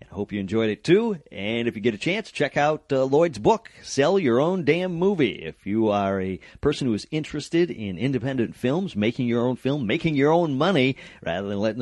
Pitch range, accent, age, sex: 95-135 Hz, American, 40-59, male